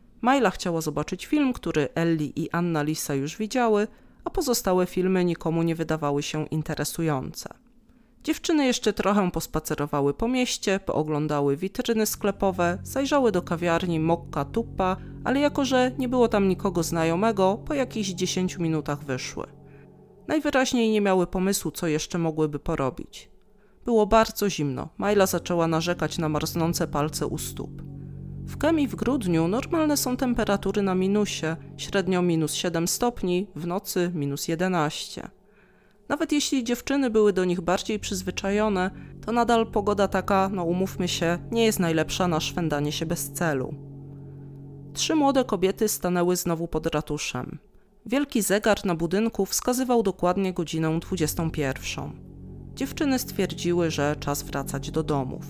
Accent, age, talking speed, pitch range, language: native, 30-49, 135 wpm, 155-215 Hz, Polish